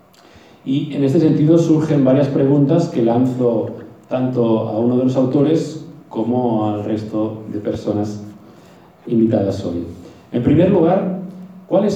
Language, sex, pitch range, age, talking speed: English, male, 115-150 Hz, 40-59, 130 wpm